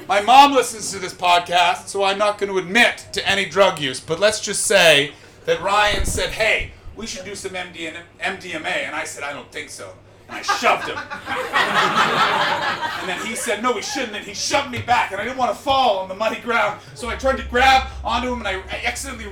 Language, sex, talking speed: English, male, 225 wpm